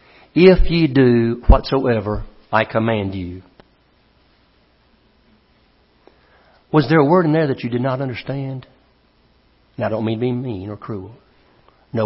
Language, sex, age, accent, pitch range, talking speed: English, male, 60-79, American, 100-125 Hz, 140 wpm